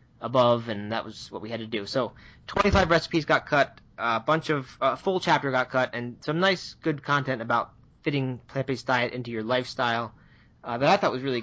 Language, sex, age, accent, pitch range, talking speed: English, male, 20-39, American, 120-150 Hz, 210 wpm